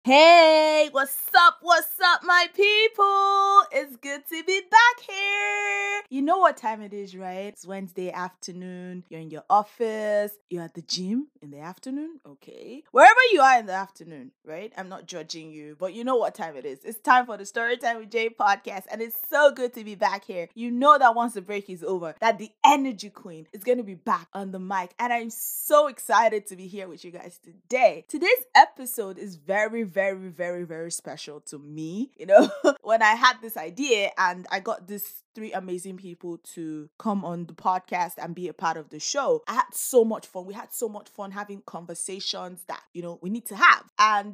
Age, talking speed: 20-39, 210 wpm